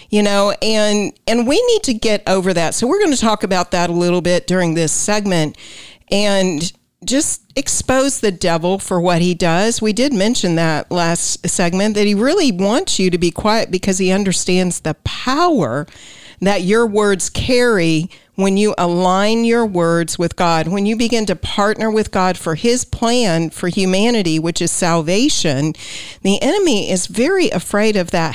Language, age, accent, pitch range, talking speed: English, 50-69, American, 175-220 Hz, 180 wpm